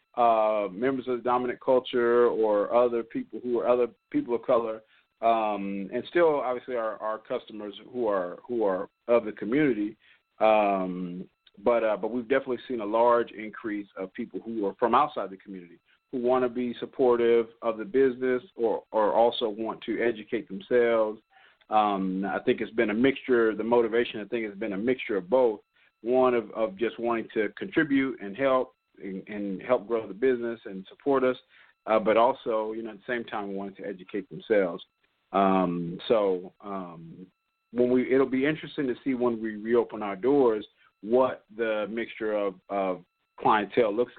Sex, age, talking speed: male, 40-59, 180 wpm